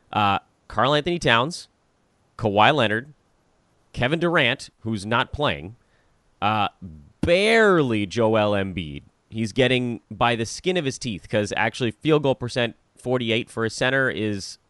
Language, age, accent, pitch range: English, 30-49, American, 100-135 Hz